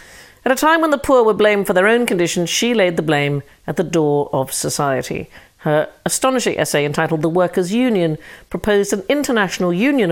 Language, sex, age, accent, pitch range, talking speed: English, female, 50-69, British, 155-220 Hz, 190 wpm